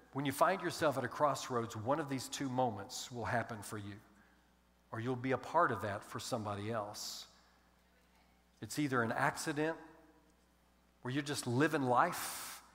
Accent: American